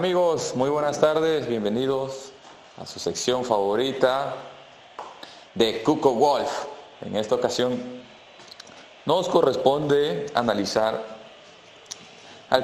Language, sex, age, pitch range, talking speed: Spanish, male, 30-49, 110-145 Hz, 90 wpm